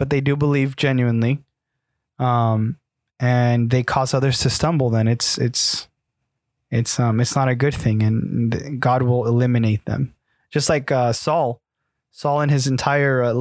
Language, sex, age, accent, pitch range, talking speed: English, male, 20-39, American, 125-145 Hz, 160 wpm